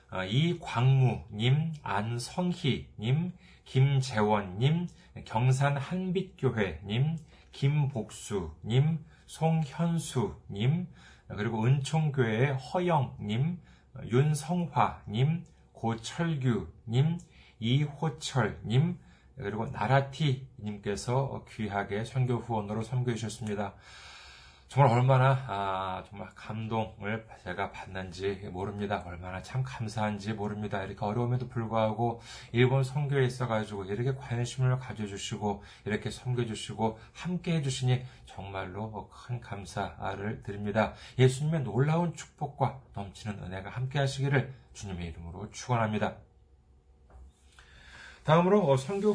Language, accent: Korean, native